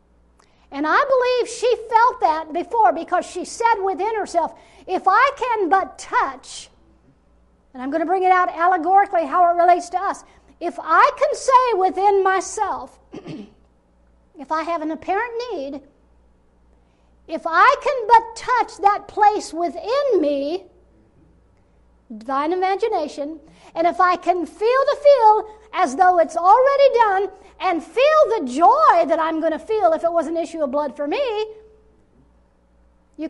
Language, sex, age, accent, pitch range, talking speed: English, female, 60-79, American, 285-390 Hz, 150 wpm